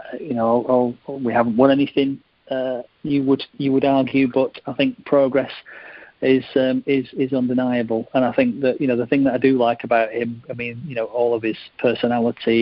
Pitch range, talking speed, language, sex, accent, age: 115-130 Hz, 215 wpm, English, male, British, 40-59